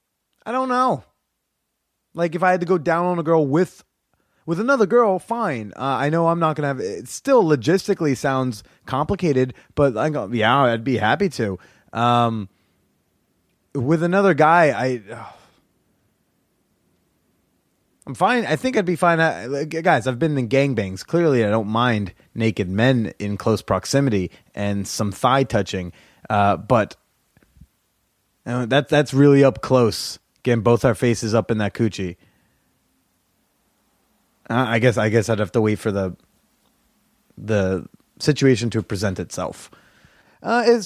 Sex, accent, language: male, American, English